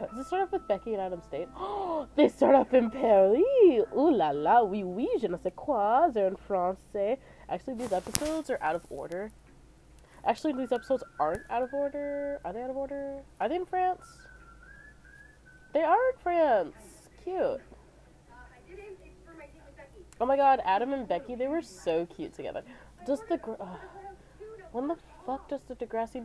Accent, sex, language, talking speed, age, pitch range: American, female, English, 170 wpm, 20-39, 200-330 Hz